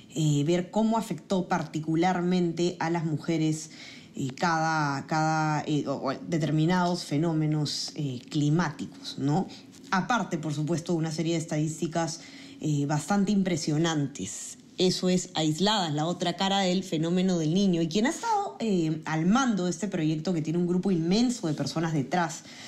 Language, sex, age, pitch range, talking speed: Spanish, female, 20-39, 155-190 Hz, 145 wpm